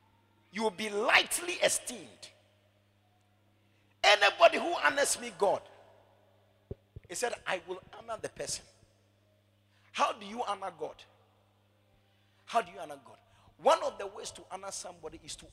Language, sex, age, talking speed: English, male, 50-69, 140 wpm